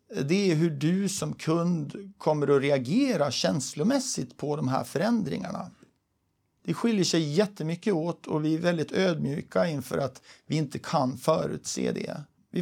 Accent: native